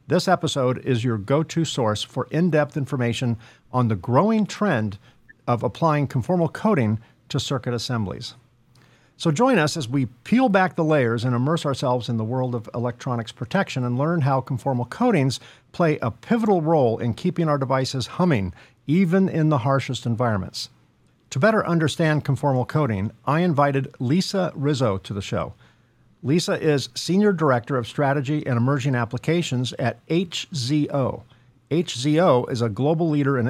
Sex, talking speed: male, 155 wpm